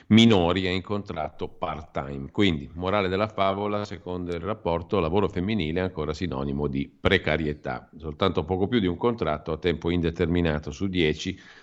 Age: 50-69